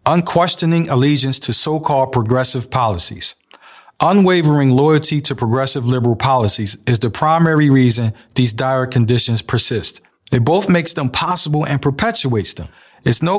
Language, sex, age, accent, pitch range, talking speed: English, male, 40-59, American, 120-150 Hz, 135 wpm